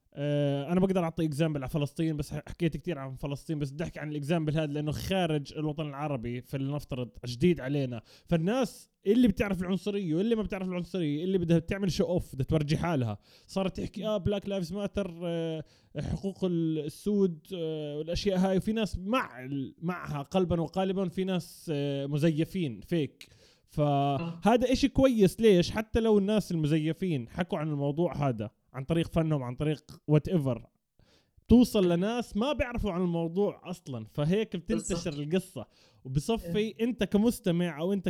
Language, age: Arabic, 20-39